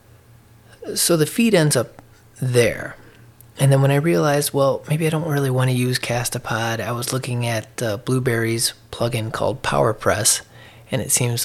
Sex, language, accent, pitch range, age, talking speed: male, English, American, 110-130 Hz, 30-49, 170 wpm